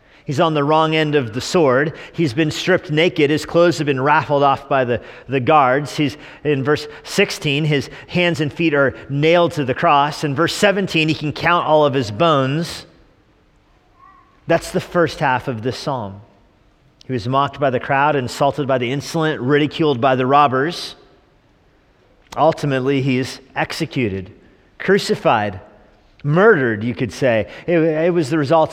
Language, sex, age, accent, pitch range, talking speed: English, male, 40-59, American, 135-165 Hz, 165 wpm